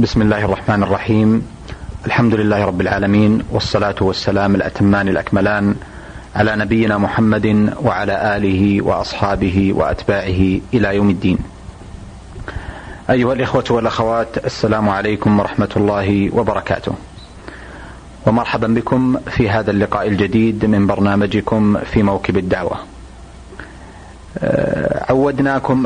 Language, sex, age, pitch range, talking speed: Arabic, male, 30-49, 100-115 Hz, 95 wpm